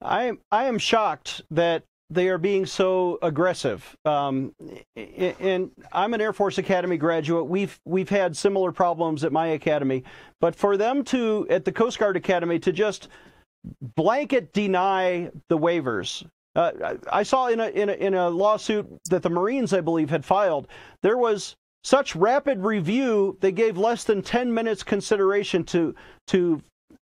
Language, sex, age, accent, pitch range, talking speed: English, male, 40-59, American, 175-220 Hz, 160 wpm